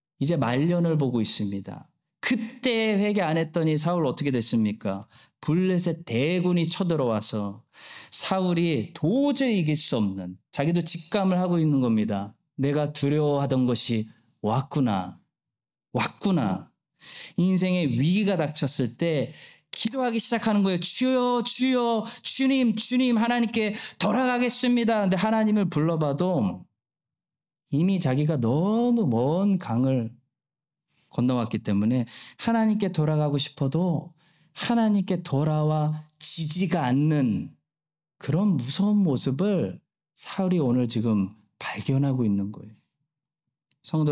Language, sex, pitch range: Korean, male, 120-185 Hz